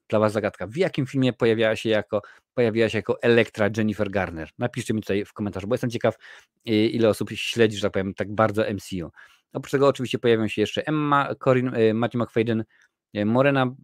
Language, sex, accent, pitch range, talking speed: Polish, male, native, 100-120 Hz, 180 wpm